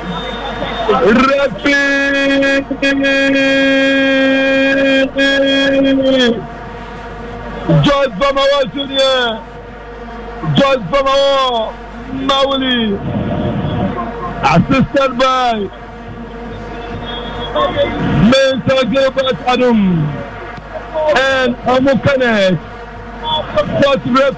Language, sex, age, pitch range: English, male, 50-69, 235-270 Hz